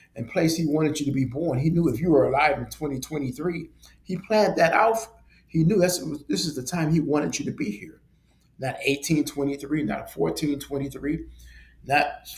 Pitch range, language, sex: 110-140 Hz, English, male